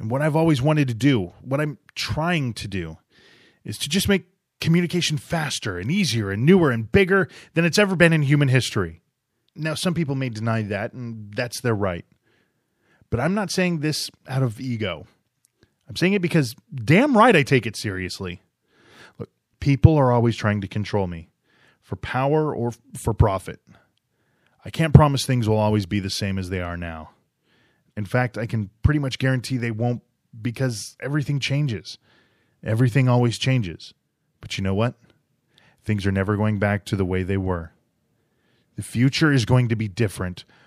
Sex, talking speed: male, 180 wpm